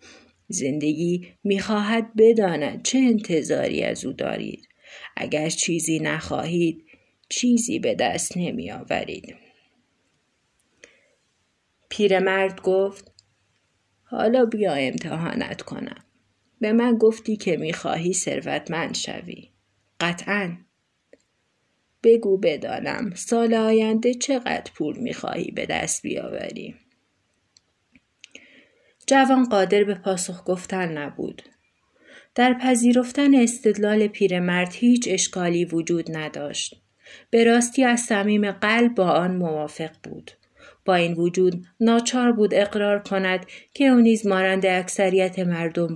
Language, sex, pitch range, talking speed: Persian, female, 160-225 Hz, 100 wpm